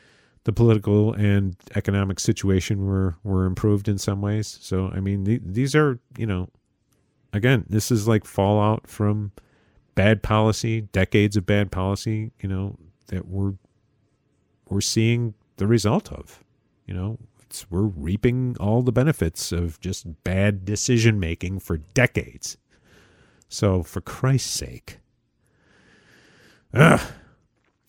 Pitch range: 95-120 Hz